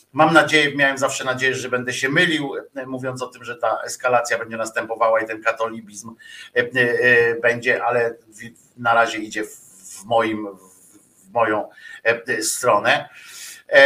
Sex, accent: male, native